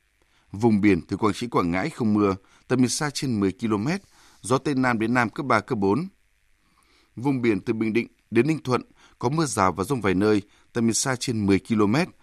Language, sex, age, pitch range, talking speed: Vietnamese, male, 20-39, 105-135 Hz, 220 wpm